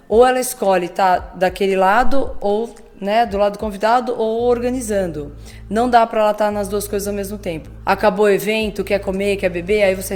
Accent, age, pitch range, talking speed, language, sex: Brazilian, 20-39, 185-245 Hz, 200 wpm, Portuguese, female